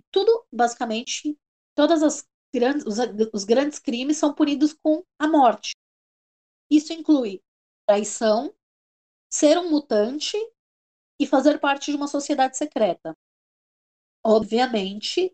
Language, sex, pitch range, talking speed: Portuguese, female, 240-300 Hz, 100 wpm